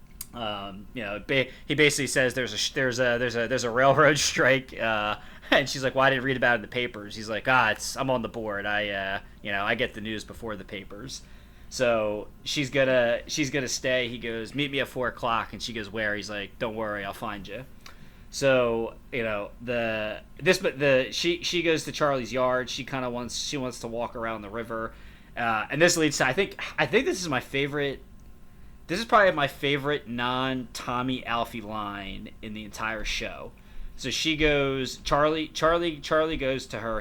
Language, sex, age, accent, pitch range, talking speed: English, male, 20-39, American, 110-130 Hz, 215 wpm